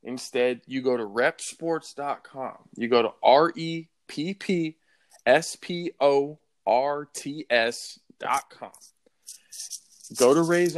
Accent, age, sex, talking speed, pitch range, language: American, 20-39, male, 130 wpm, 130-165 Hz, English